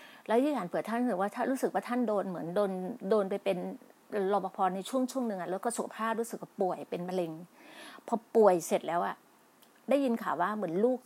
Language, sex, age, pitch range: Thai, female, 30-49, 190-240 Hz